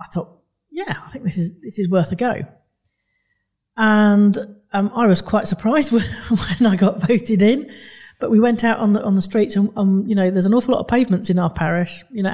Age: 40-59